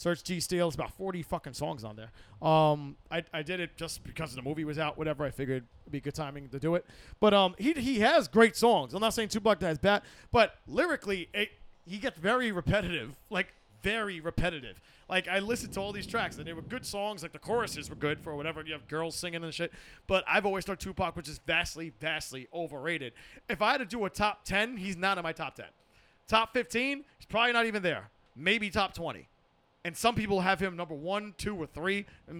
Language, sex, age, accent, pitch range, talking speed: English, male, 30-49, American, 160-215 Hz, 230 wpm